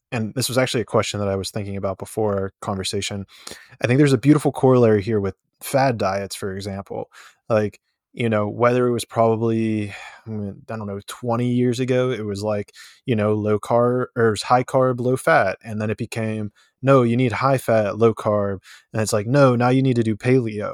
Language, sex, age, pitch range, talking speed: English, male, 20-39, 105-130 Hz, 210 wpm